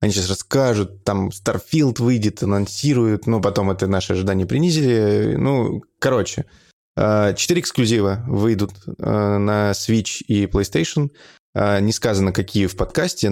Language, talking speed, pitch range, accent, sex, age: Russian, 120 wpm, 95-115 Hz, native, male, 20-39